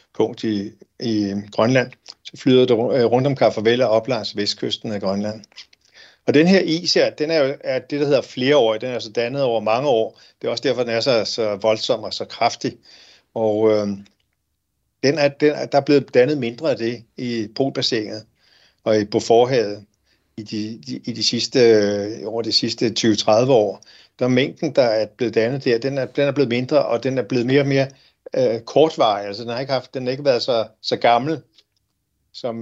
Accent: native